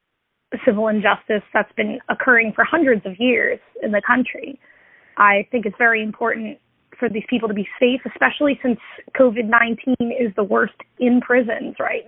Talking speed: 160 wpm